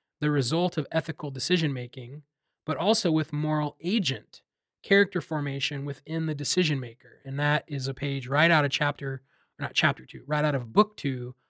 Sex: male